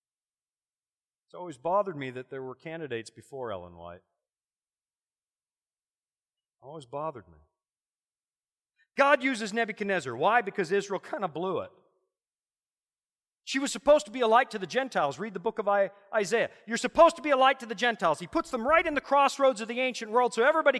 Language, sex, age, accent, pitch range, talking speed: English, male, 40-59, American, 200-275 Hz, 175 wpm